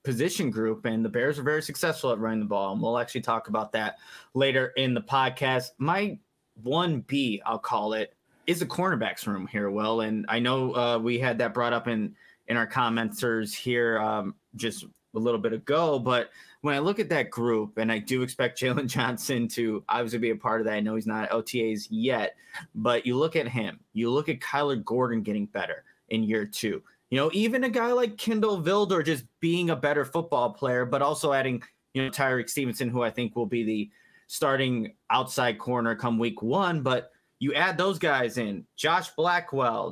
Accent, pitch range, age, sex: American, 115-150 Hz, 20-39, male